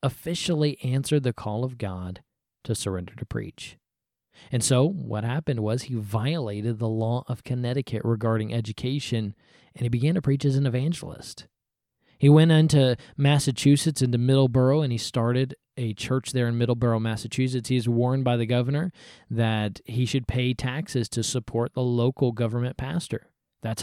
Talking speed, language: 160 wpm, English